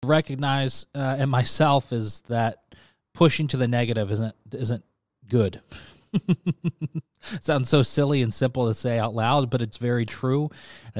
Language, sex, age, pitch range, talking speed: English, male, 30-49, 115-150 Hz, 145 wpm